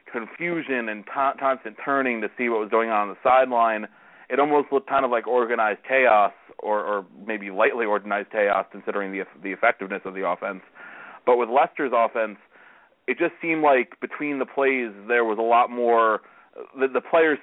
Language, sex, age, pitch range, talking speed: English, male, 30-49, 105-125 Hz, 185 wpm